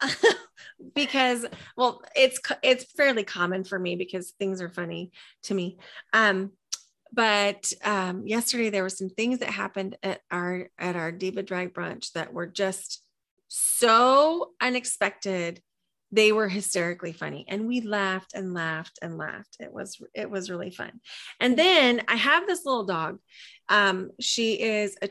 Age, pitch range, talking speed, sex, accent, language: 30-49, 190-235 Hz, 155 wpm, female, American, English